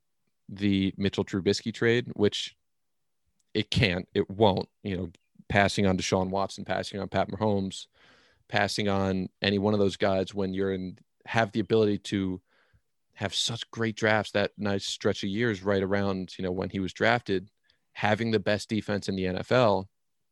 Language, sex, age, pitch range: English, male, 30-49, 95-110 Hz